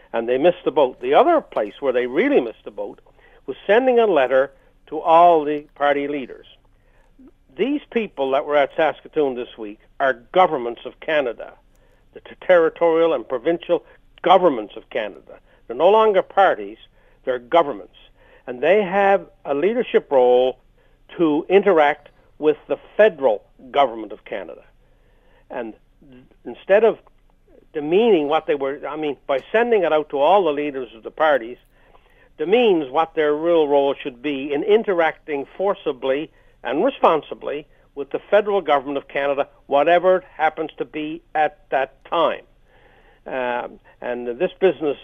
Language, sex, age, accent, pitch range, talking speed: English, male, 60-79, American, 140-200 Hz, 150 wpm